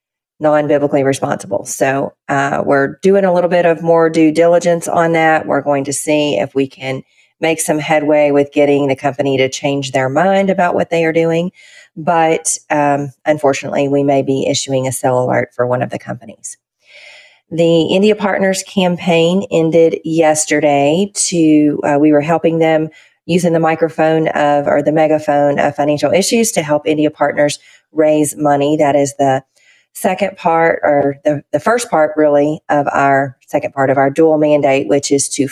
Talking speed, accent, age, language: 175 wpm, American, 40-59, English